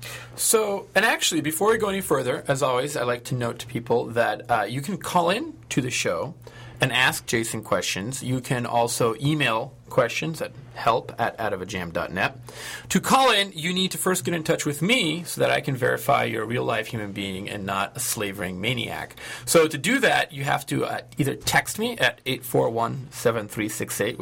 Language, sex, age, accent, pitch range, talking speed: English, male, 30-49, American, 120-160 Hz, 195 wpm